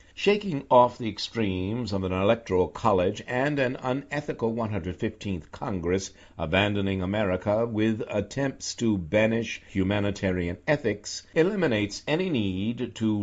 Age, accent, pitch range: 60-79, American, 95-115 Hz